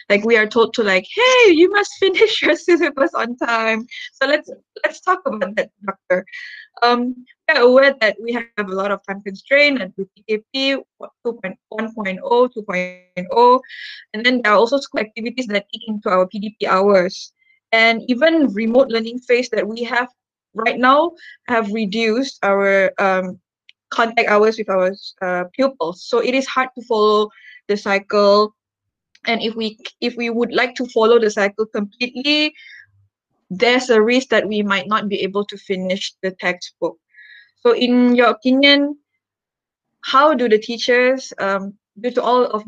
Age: 20-39